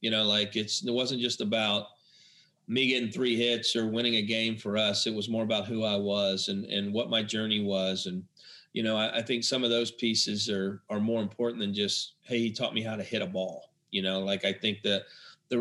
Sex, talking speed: male, 240 wpm